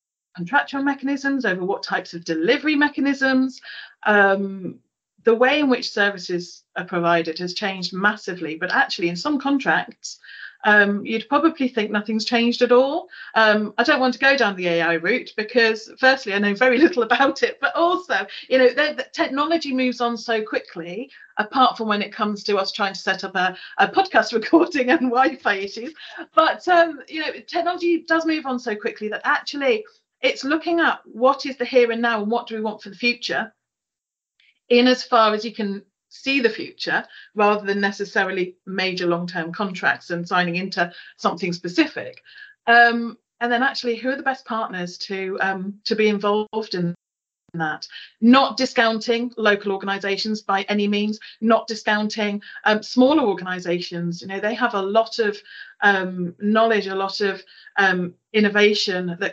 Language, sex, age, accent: English, female, 40-59, British